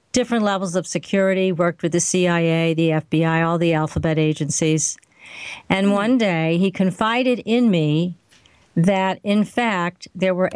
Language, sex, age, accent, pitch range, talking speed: English, female, 50-69, American, 165-205 Hz, 150 wpm